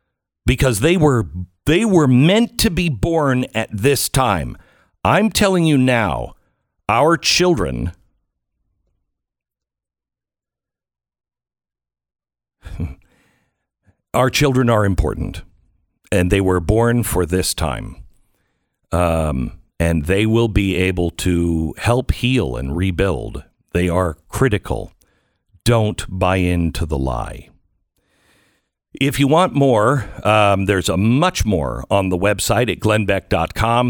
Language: English